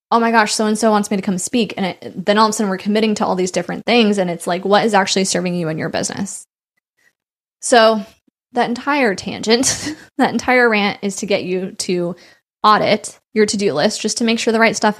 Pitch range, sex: 170-215 Hz, female